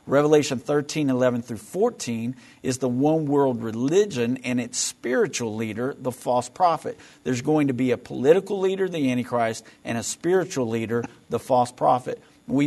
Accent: American